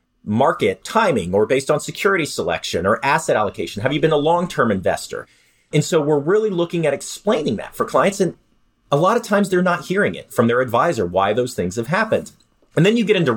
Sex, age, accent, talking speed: male, 40-59, American, 215 wpm